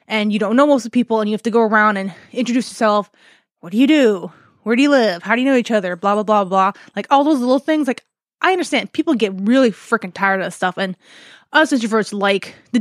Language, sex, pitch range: English, female, 205-265 Hz